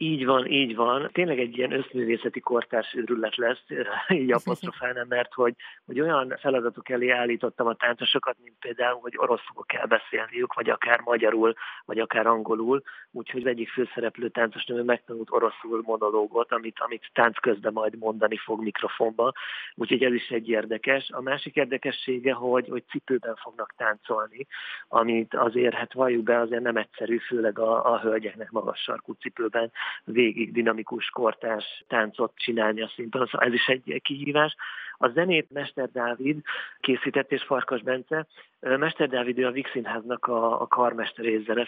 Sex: male